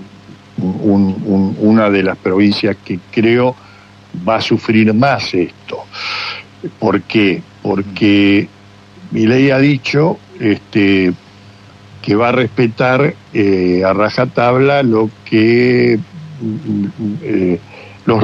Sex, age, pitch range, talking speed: male, 60-79, 100-120 Hz, 105 wpm